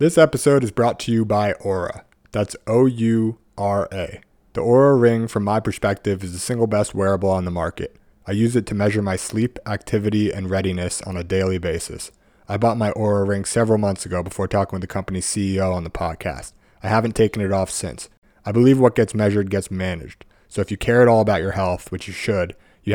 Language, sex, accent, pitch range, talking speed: English, male, American, 95-110 Hz, 210 wpm